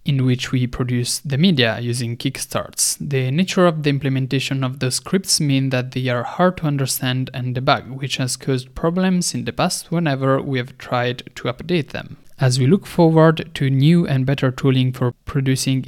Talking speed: 190 wpm